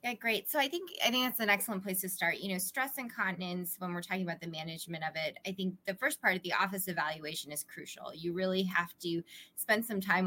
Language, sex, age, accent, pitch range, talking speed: English, female, 20-39, American, 165-190 Hz, 250 wpm